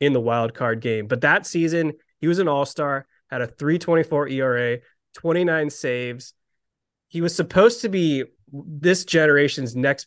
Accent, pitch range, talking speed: American, 130-155 Hz, 180 wpm